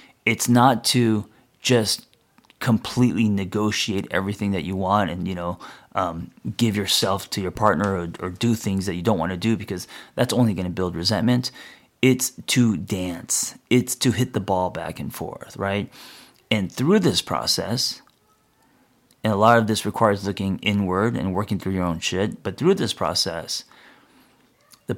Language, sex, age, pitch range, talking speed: English, male, 30-49, 95-115 Hz, 170 wpm